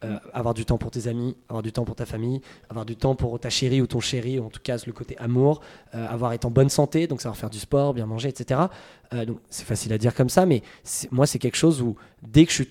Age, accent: 20-39, French